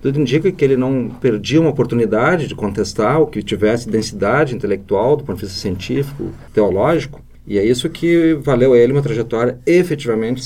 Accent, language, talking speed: Brazilian, Portuguese, 180 wpm